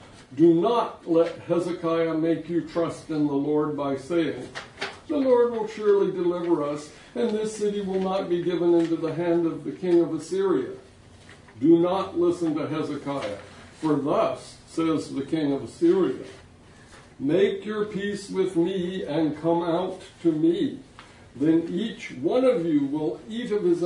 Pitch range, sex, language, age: 155-210 Hz, male, English, 60-79